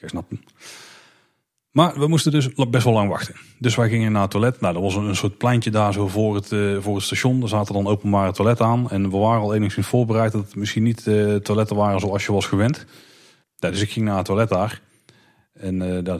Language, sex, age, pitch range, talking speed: Dutch, male, 30-49, 95-115 Hz, 235 wpm